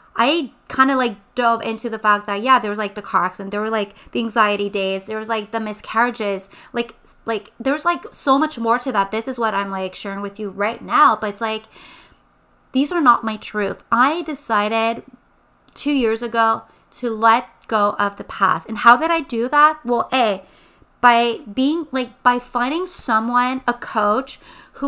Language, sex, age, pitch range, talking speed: English, female, 30-49, 210-245 Hz, 200 wpm